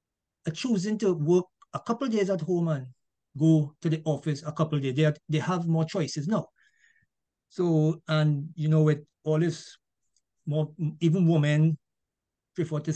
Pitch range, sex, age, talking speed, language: 155-190 Hz, male, 50-69, 165 wpm, English